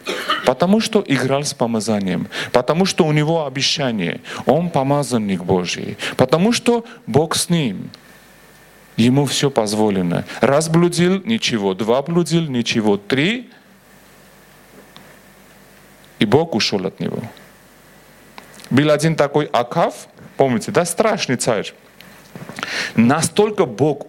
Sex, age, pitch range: male, 40-59, 120-180 Hz